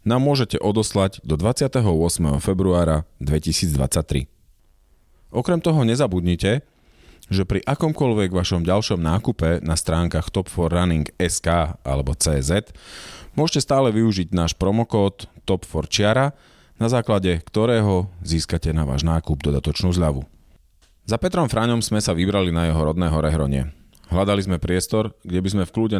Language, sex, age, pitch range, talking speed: Slovak, male, 40-59, 80-105 Hz, 130 wpm